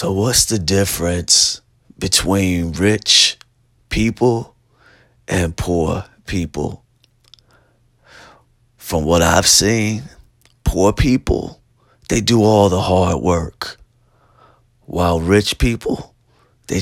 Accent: American